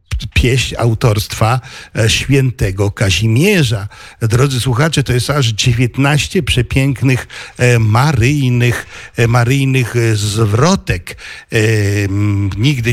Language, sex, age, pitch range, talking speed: Polish, male, 60-79, 115-130 Hz, 75 wpm